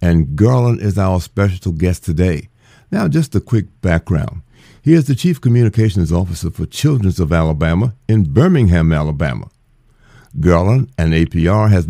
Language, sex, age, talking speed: English, male, 60-79, 145 wpm